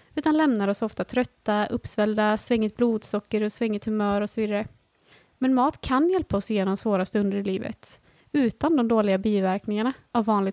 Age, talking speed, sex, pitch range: 20-39, 170 wpm, female, 210-260 Hz